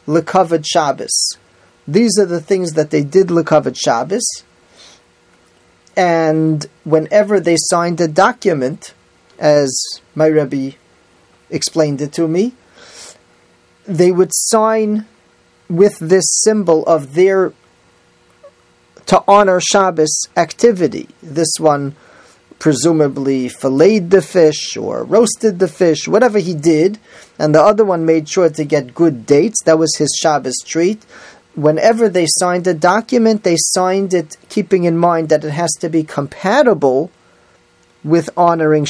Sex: male